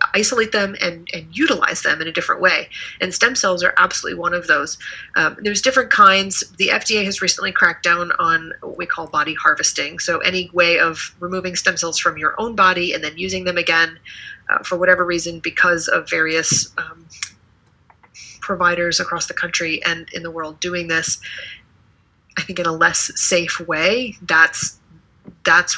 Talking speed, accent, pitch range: 180 wpm, American, 170-200 Hz